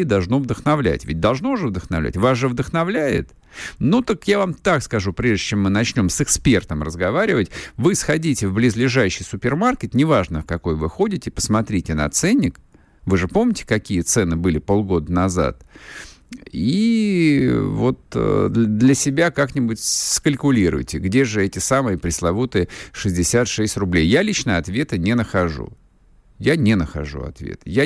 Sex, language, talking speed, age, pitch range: male, Russian, 140 wpm, 50-69, 85-125 Hz